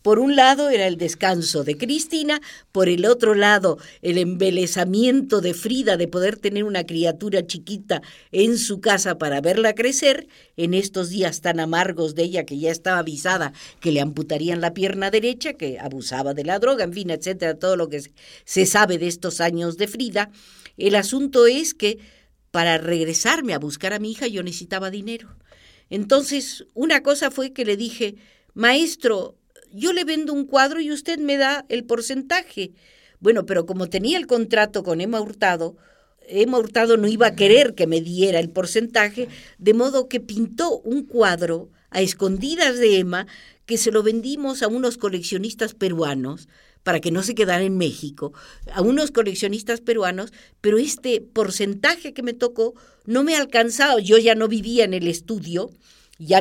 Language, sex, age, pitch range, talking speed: Spanish, female, 50-69, 180-240 Hz, 175 wpm